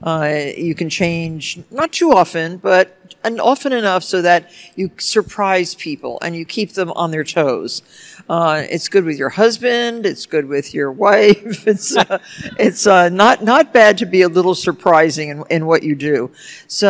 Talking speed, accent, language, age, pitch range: 185 wpm, American, English, 60-79, 155-200 Hz